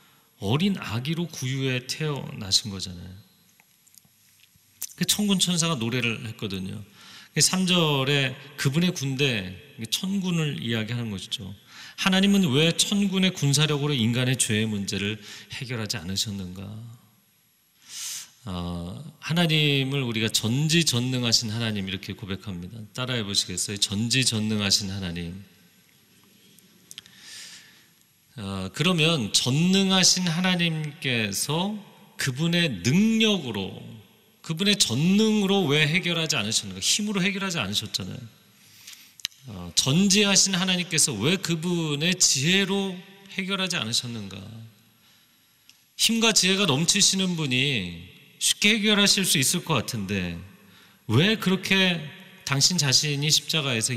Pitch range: 110-175 Hz